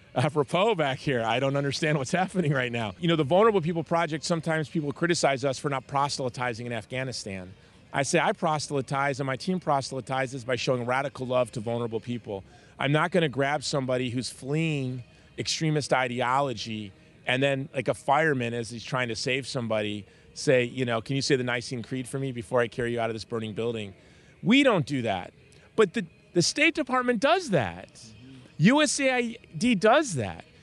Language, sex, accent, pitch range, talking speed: English, male, American, 125-175 Hz, 185 wpm